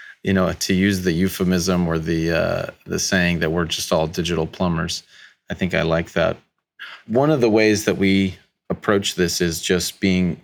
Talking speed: 190 wpm